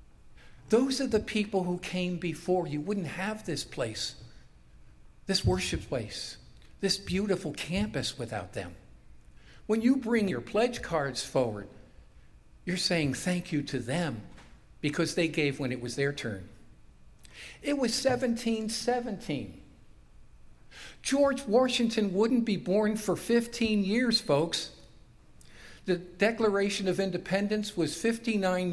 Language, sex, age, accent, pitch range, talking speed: English, male, 50-69, American, 145-200 Hz, 125 wpm